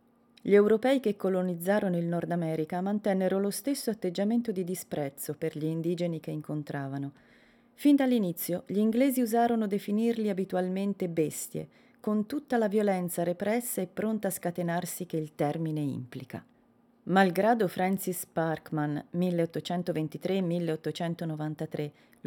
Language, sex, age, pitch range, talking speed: Italian, female, 30-49, 160-205 Hz, 115 wpm